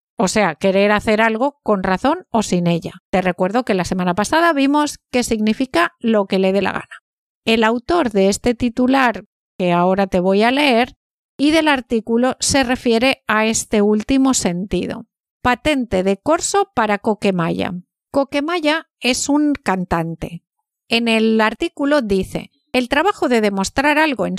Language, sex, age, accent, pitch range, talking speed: Spanish, female, 50-69, Spanish, 200-275 Hz, 155 wpm